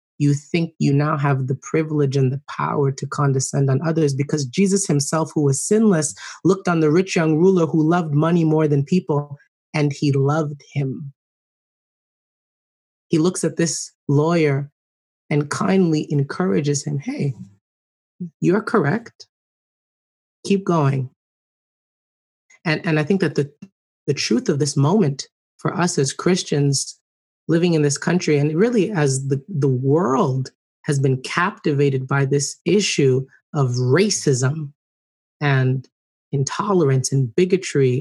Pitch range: 135-165 Hz